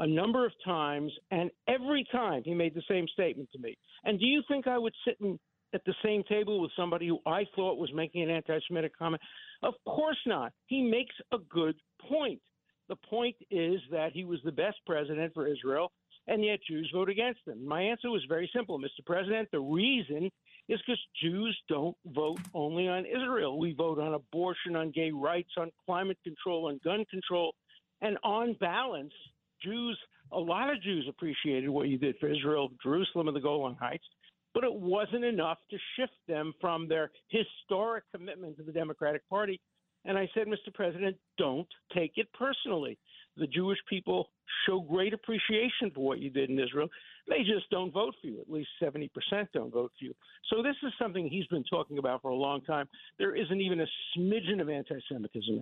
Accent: American